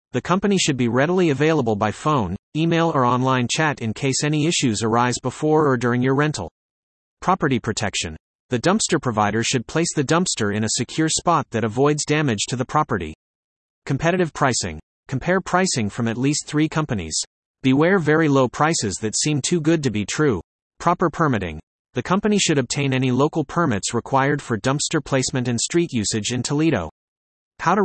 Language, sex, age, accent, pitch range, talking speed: English, male, 30-49, American, 110-155 Hz, 175 wpm